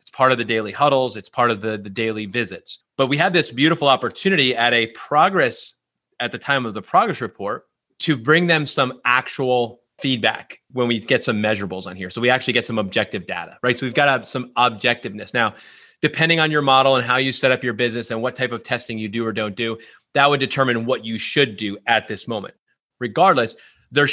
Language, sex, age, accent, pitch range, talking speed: English, male, 30-49, American, 115-140 Hz, 220 wpm